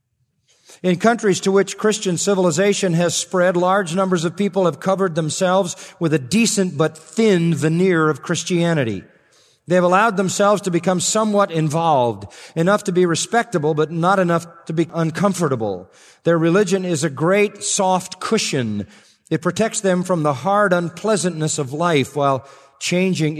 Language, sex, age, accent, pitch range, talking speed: English, male, 40-59, American, 125-175 Hz, 150 wpm